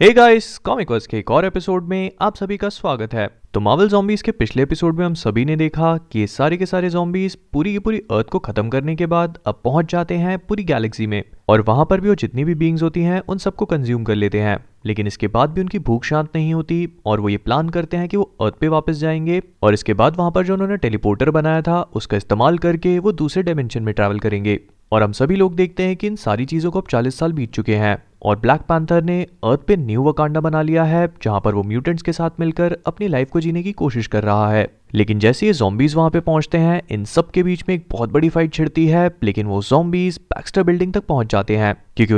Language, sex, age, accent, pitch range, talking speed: Hindi, male, 30-49, native, 110-175 Hz, 155 wpm